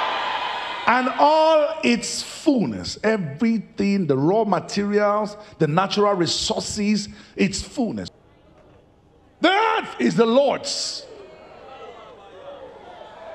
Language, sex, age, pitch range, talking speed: English, male, 50-69, 165-240 Hz, 80 wpm